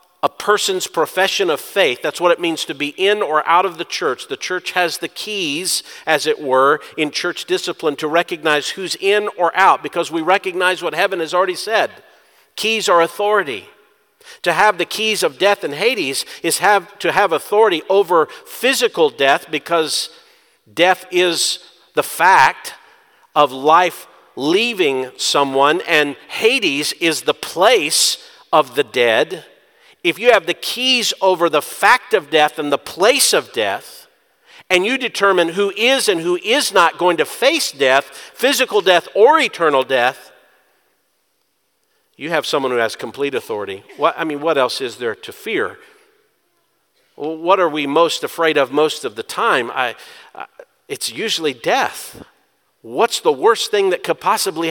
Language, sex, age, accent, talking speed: English, male, 50-69, American, 165 wpm